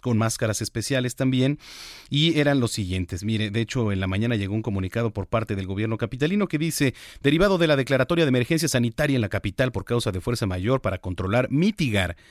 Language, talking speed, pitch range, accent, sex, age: Spanish, 205 wpm, 105-140 Hz, Mexican, male, 40-59